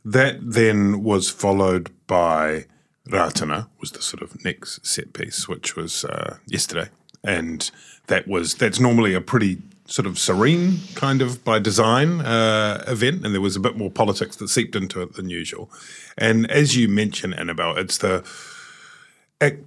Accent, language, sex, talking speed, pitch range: British, English, male, 165 wpm, 95-135 Hz